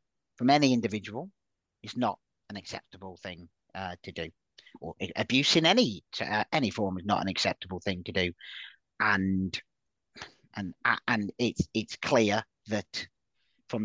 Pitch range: 110-145 Hz